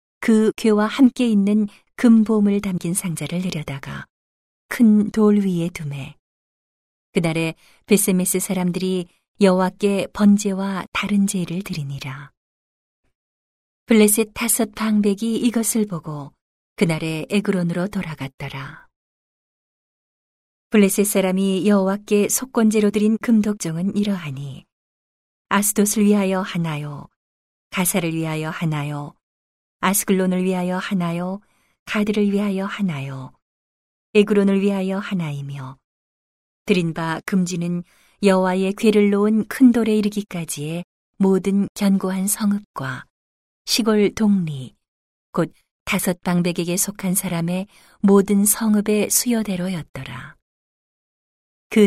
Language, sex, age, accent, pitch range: Korean, female, 40-59, native, 160-205 Hz